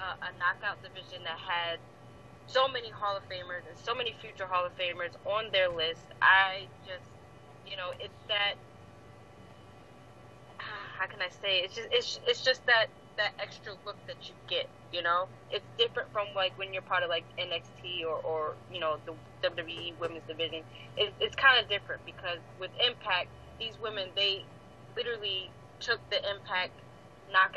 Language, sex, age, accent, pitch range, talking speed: English, female, 20-39, American, 160-200 Hz, 175 wpm